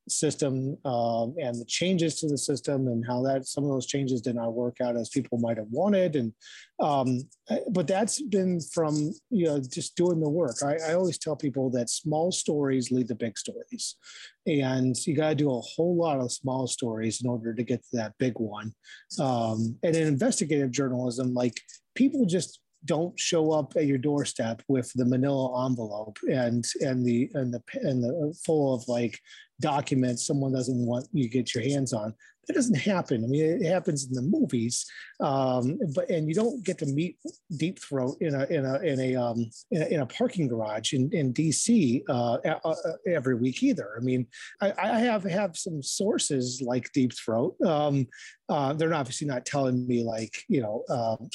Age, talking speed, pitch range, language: 30-49, 195 wpm, 125-165 Hz, English